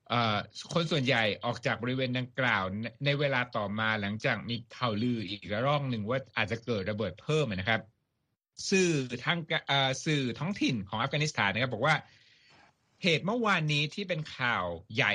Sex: male